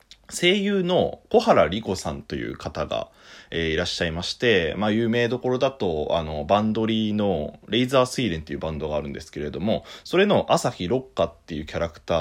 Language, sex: Japanese, male